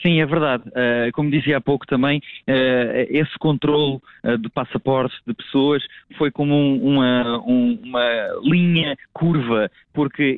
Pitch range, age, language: 115-145 Hz, 20-39, Portuguese